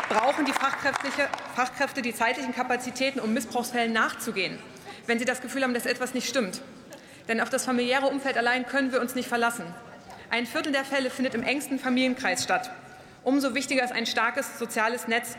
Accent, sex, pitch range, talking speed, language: German, female, 220-255 Hz, 175 wpm, German